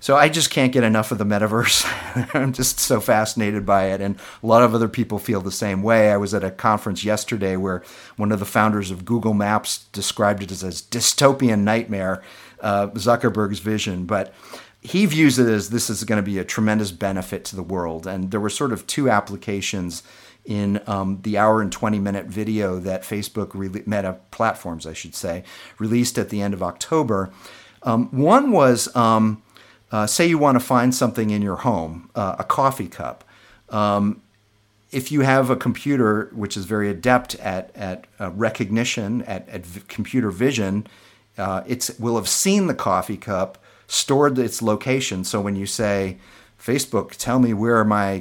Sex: male